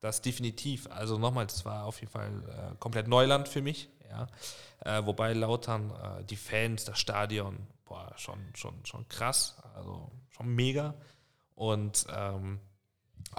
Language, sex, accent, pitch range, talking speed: German, male, German, 110-125 Hz, 145 wpm